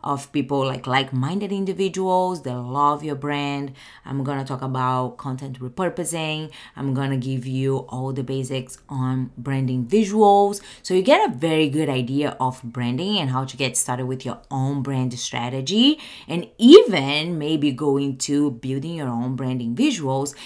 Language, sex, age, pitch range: English, female, 20-39, 135-205 Hz